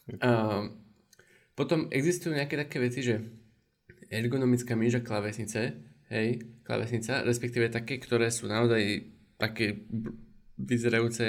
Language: Slovak